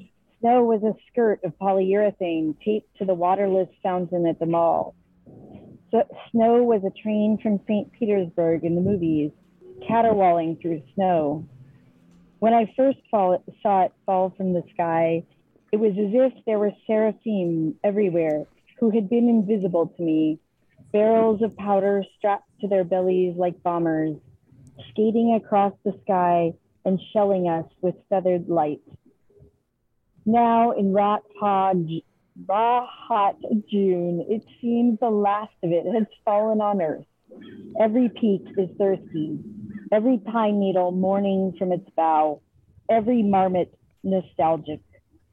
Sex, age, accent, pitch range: female, 30-49, American, 175-215 Hz